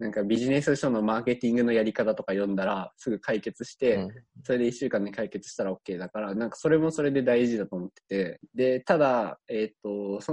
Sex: male